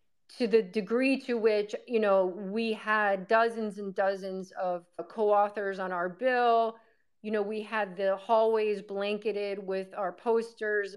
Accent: American